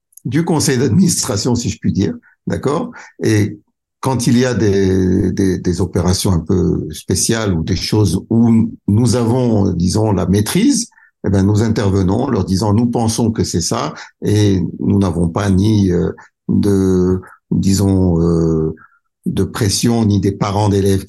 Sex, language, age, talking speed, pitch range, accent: male, French, 60-79, 160 wpm, 95-115 Hz, French